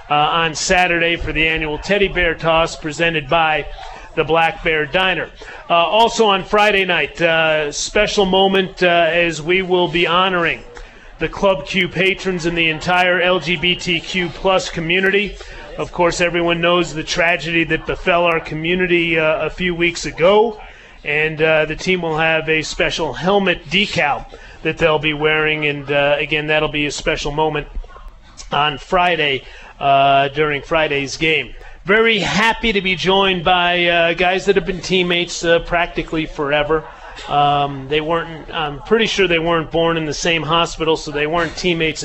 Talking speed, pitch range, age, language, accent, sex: 165 wpm, 155-190 Hz, 30-49, English, American, male